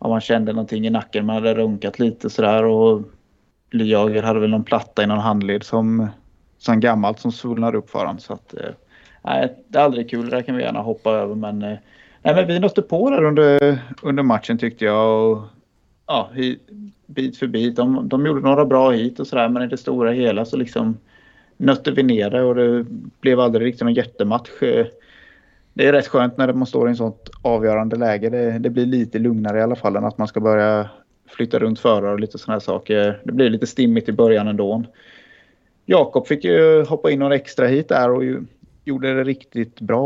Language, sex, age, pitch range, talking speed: Swedish, male, 30-49, 110-130 Hz, 210 wpm